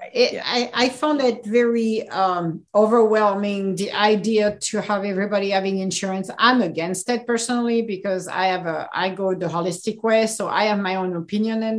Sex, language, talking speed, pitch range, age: female, English, 180 wpm, 185-245 Hz, 50-69